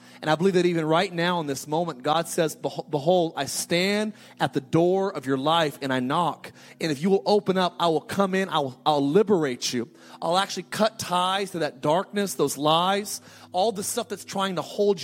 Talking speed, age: 220 wpm, 30-49